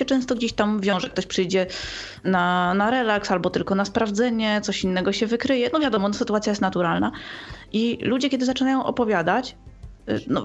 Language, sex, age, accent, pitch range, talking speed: Polish, female, 20-39, native, 195-245 Hz, 160 wpm